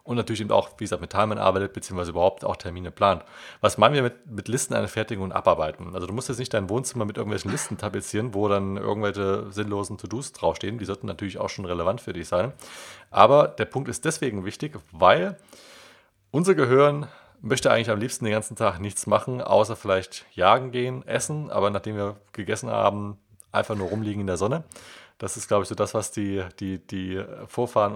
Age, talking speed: 30-49, 205 wpm